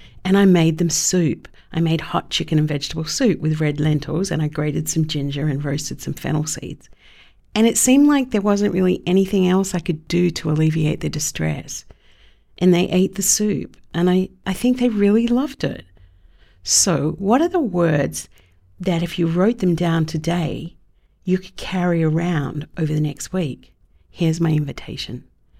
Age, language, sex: 50-69, English, female